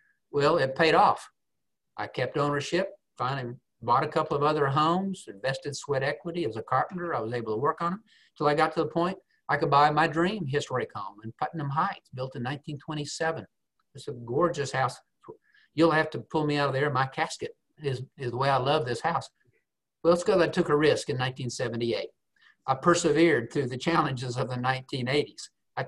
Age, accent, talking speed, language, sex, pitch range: 50-69, American, 200 wpm, English, male, 135-165 Hz